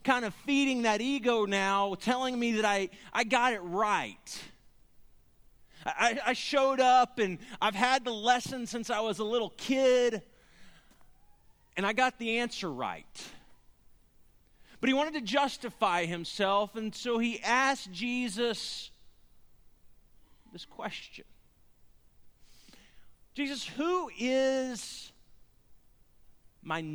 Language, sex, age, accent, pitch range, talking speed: English, male, 40-59, American, 215-260 Hz, 115 wpm